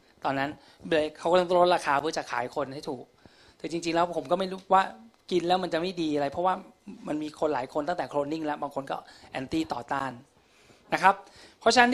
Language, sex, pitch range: Thai, male, 160-210 Hz